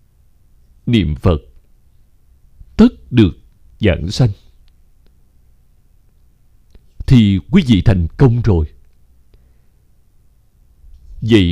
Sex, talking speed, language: male, 70 wpm, Vietnamese